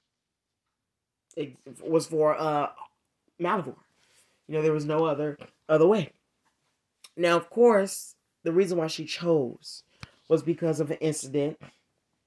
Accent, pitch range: American, 130-165 Hz